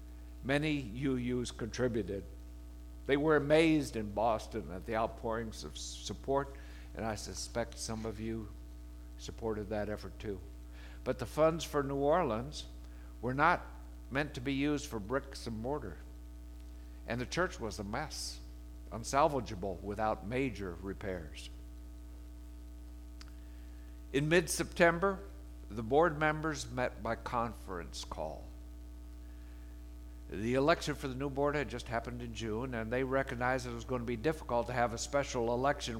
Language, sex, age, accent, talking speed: English, male, 60-79, American, 140 wpm